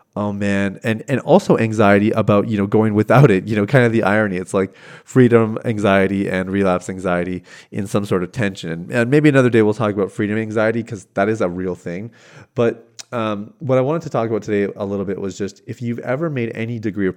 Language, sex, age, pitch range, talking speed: English, male, 30-49, 95-120 Hz, 230 wpm